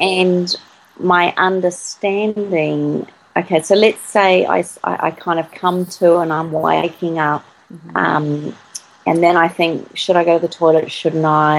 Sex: female